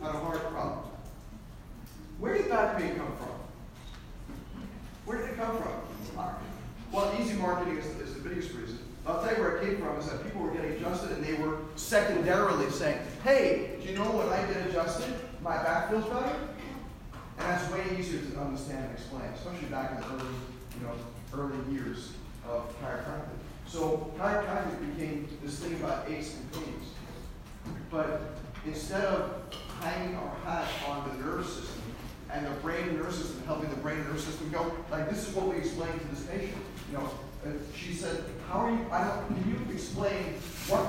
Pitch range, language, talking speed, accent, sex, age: 150-195 Hz, English, 185 wpm, American, male, 40-59